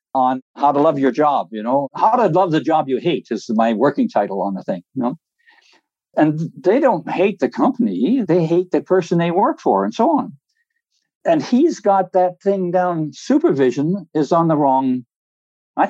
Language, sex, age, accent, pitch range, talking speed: English, male, 60-79, American, 140-200 Hz, 195 wpm